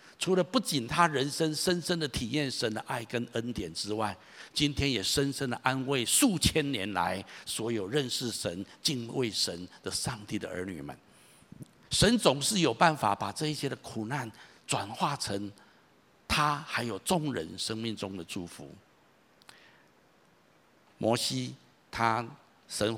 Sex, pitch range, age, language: male, 105-150 Hz, 60-79, Chinese